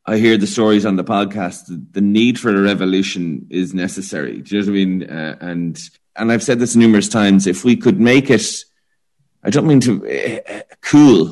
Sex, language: male, English